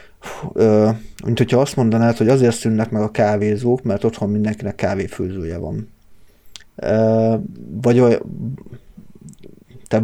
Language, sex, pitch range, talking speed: Hungarian, male, 105-120 Hz, 95 wpm